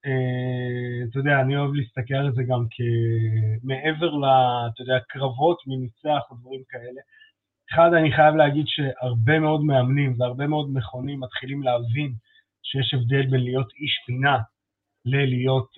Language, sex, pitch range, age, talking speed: Hebrew, male, 120-145 Hz, 30-49, 125 wpm